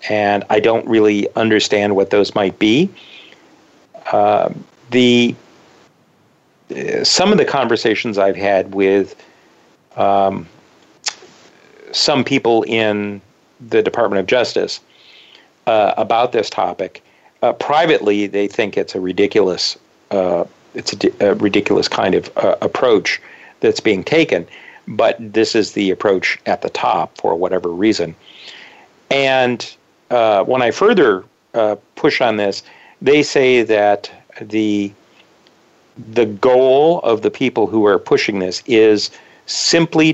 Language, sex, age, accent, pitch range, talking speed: English, male, 50-69, American, 105-150 Hz, 125 wpm